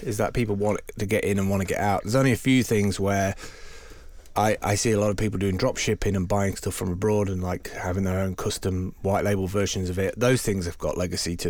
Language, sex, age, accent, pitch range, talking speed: English, male, 30-49, British, 95-110 Hz, 260 wpm